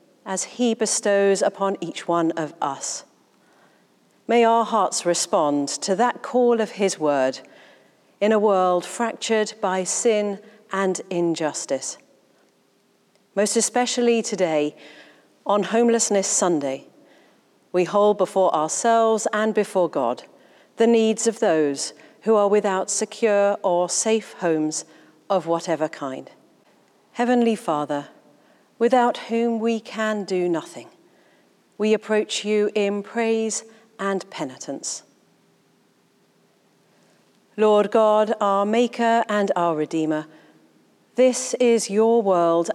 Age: 40-59